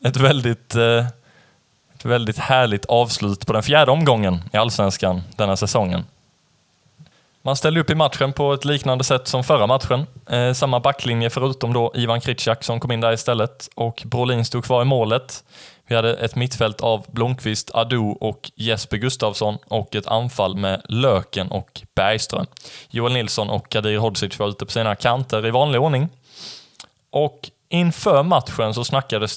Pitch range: 110-130 Hz